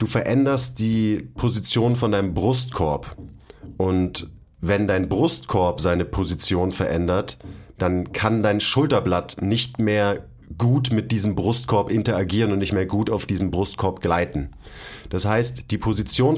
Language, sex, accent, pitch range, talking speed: German, male, German, 95-115 Hz, 135 wpm